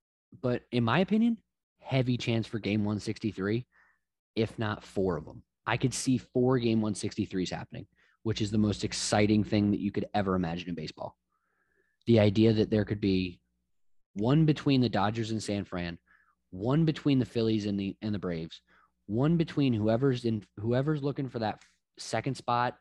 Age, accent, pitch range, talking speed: 20-39, American, 100-125 Hz, 175 wpm